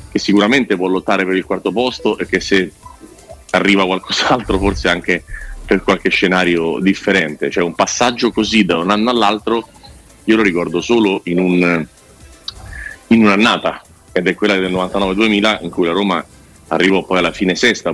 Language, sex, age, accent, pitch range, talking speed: Italian, male, 30-49, native, 90-110 Hz, 165 wpm